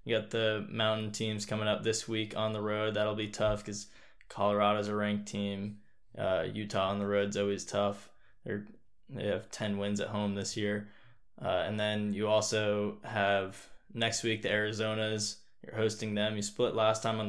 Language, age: English, 10-29